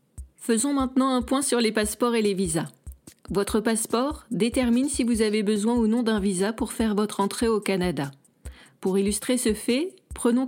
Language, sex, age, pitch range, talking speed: French, female, 40-59, 200-240 Hz, 185 wpm